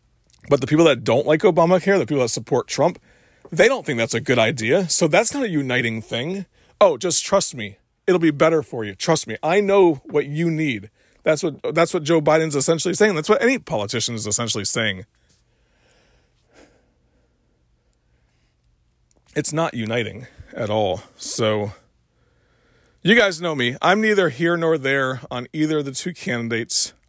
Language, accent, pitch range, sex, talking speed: English, American, 110-155 Hz, male, 170 wpm